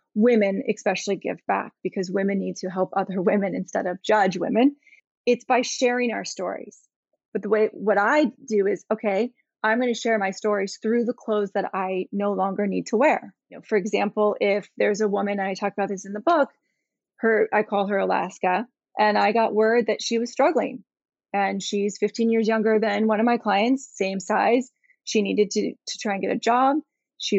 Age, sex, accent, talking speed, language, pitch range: 30-49, female, American, 205 wpm, English, 200-240 Hz